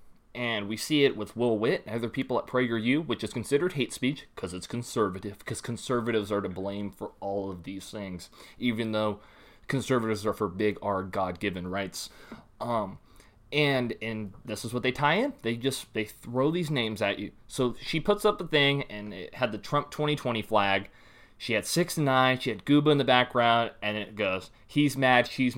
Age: 20-39